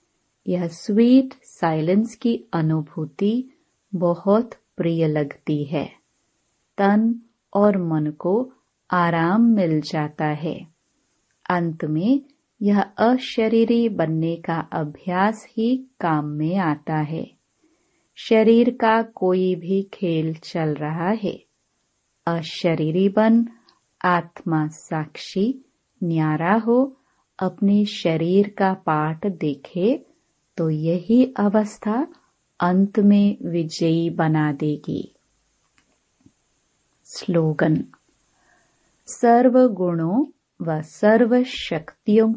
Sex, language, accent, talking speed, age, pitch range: female, Hindi, native, 90 wpm, 30-49, 160-225 Hz